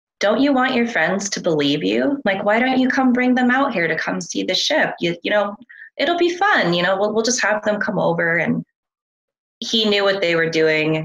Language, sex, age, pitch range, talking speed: English, female, 20-39, 150-180 Hz, 240 wpm